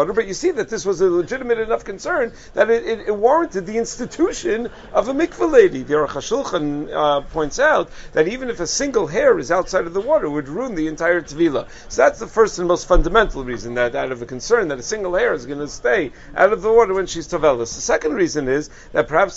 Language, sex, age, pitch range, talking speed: English, male, 50-69, 155-220 Hz, 240 wpm